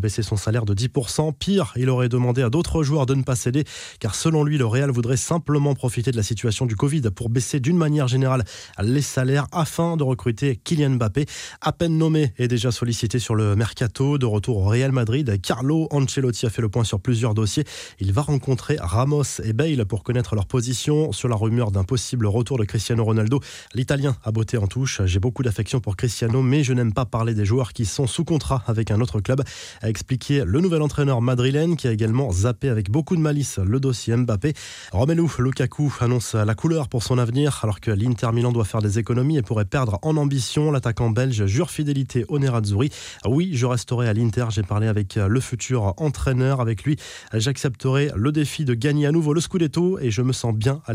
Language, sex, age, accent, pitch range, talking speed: French, male, 20-39, French, 115-140 Hz, 210 wpm